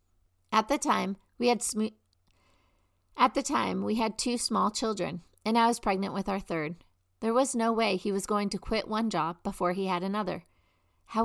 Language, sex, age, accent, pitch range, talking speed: English, female, 40-59, American, 165-225 Hz, 170 wpm